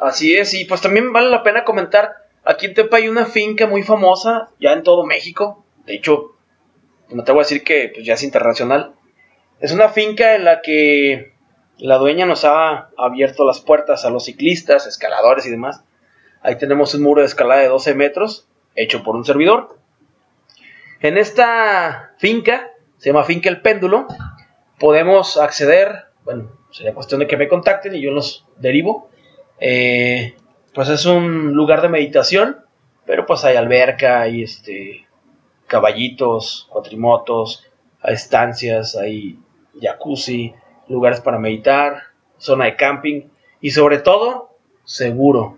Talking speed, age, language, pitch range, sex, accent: 150 wpm, 30-49, Spanish, 130-195 Hz, male, Mexican